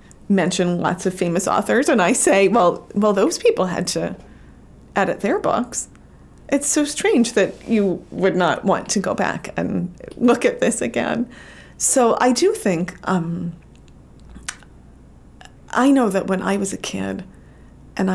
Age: 40-59